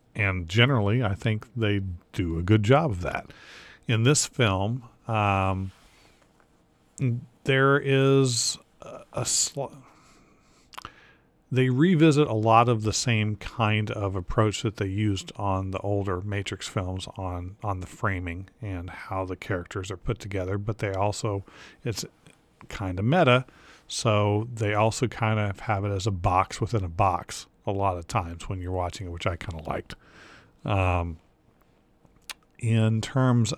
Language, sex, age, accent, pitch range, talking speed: English, male, 40-59, American, 95-120 Hz, 150 wpm